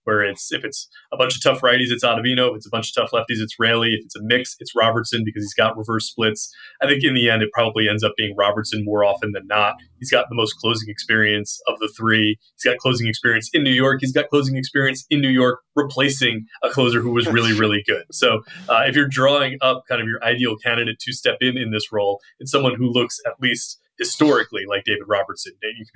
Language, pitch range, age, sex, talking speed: English, 110-130 Hz, 20-39, male, 245 wpm